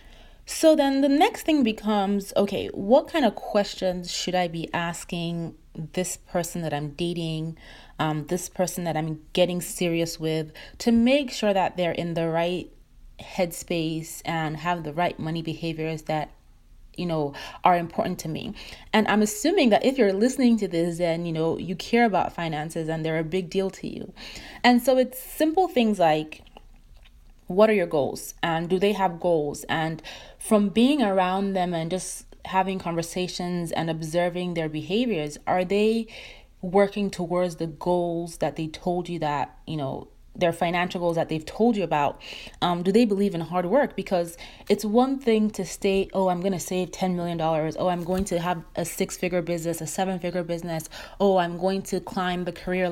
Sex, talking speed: female, 180 wpm